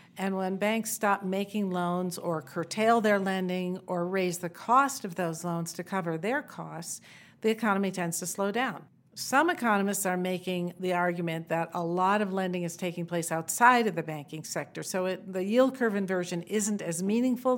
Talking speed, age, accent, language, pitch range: 185 wpm, 50-69, American, English, 175-215 Hz